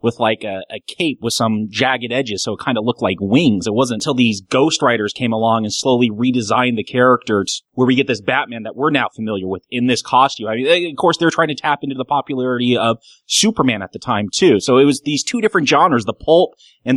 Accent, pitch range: American, 120-160 Hz